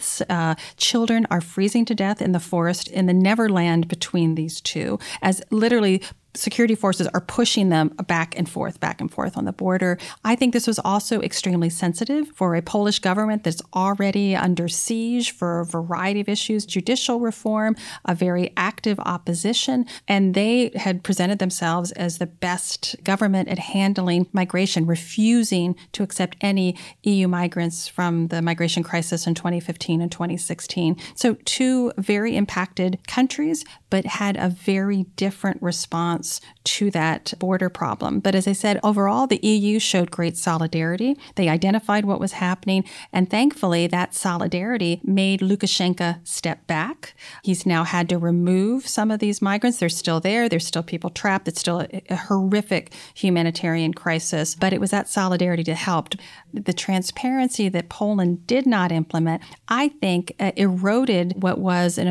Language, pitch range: English, 175-205 Hz